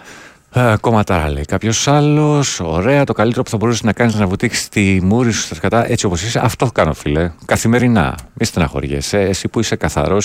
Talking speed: 200 wpm